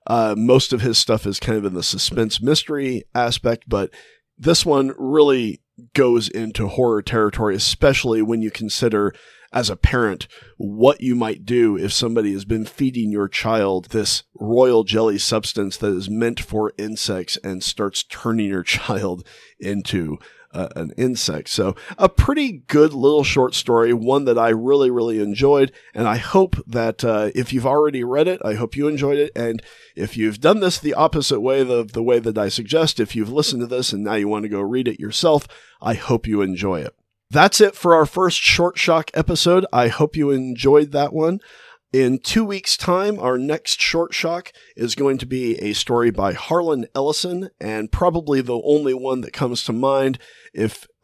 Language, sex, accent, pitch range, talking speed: English, male, American, 110-145 Hz, 185 wpm